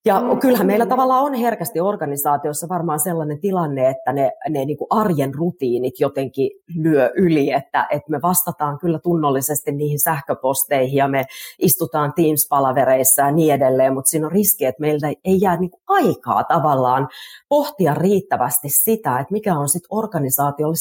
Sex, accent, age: female, native, 30-49